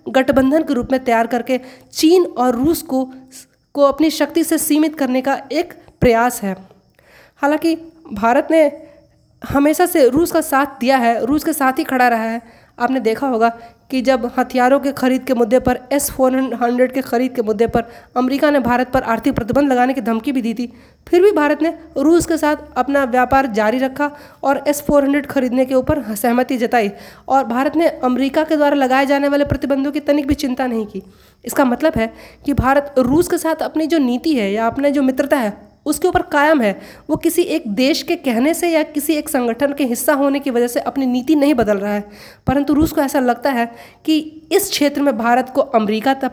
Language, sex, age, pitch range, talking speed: Hindi, female, 20-39, 250-300 Hz, 205 wpm